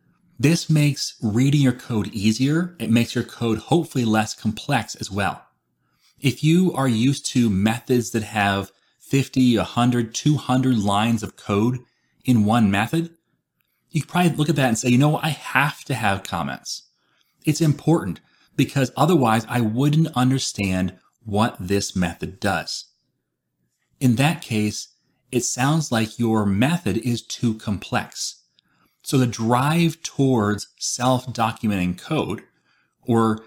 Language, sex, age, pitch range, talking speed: English, male, 30-49, 105-135 Hz, 140 wpm